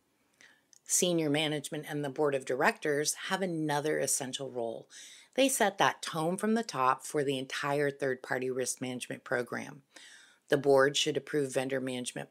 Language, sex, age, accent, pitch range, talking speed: English, female, 30-49, American, 135-190 Hz, 150 wpm